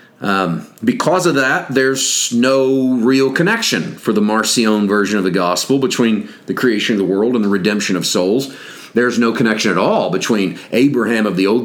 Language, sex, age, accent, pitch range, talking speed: English, male, 40-59, American, 100-130 Hz, 185 wpm